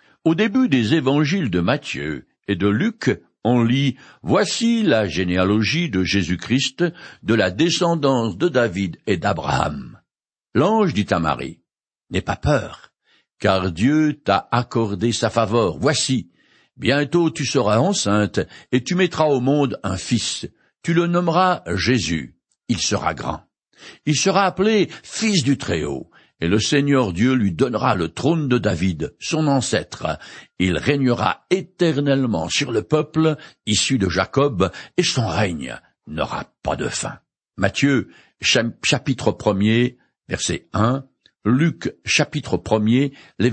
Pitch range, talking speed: 105-155 Hz, 135 wpm